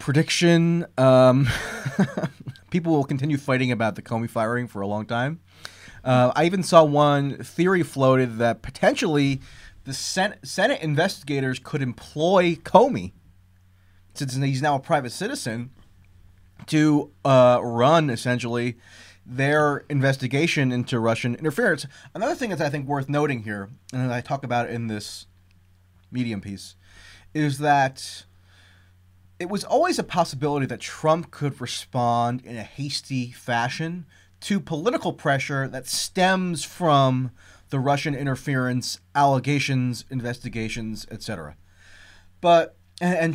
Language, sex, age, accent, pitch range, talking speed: English, male, 20-39, American, 115-155 Hz, 125 wpm